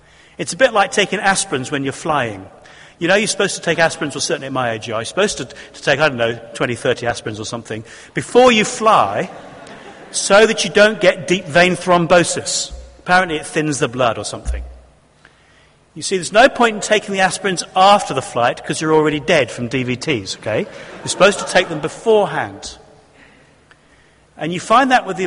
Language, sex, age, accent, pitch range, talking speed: English, male, 40-59, British, 145-205 Hz, 195 wpm